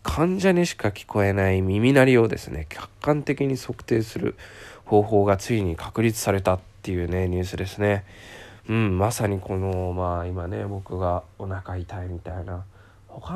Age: 20-39